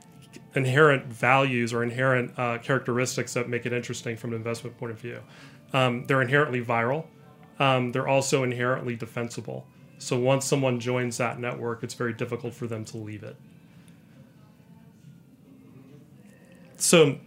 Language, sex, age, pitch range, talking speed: English, male, 30-49, 120-145 Hz, 140 wpm